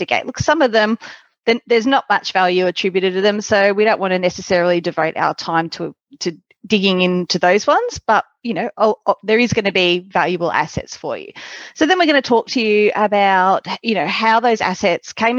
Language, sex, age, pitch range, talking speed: English, female, 30-49, 175-230 Hz, 205 wpm